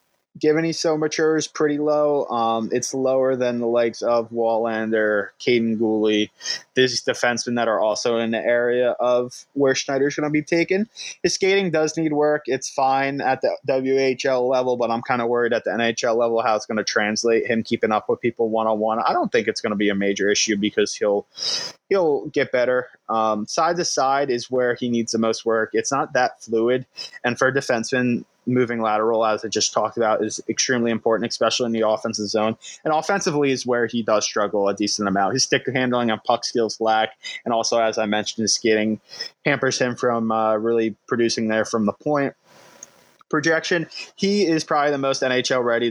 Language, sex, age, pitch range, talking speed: English, male, 20-39, 110-130 Hz, 200 wpm